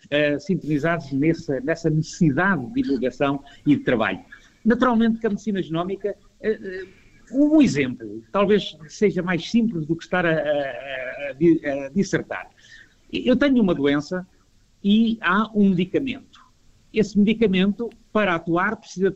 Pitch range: 160-230 Hz